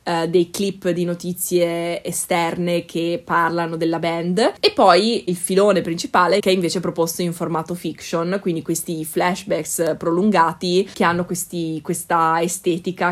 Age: 20-39